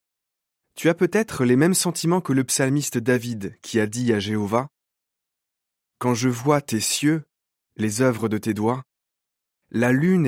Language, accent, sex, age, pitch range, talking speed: French, French, male, 20-39, 110-150 Hz, 165 wpm